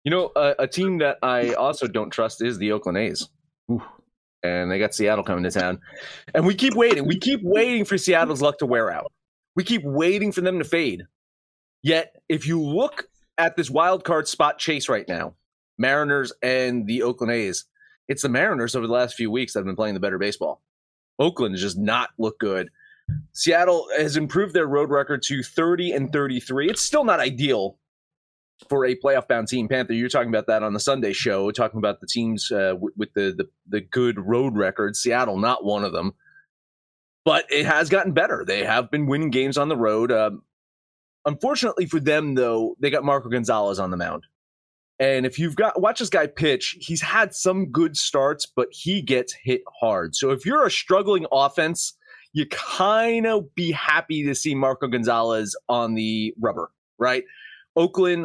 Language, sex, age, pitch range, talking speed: English, male, 30-49, 115-170 Hz, 195 wpm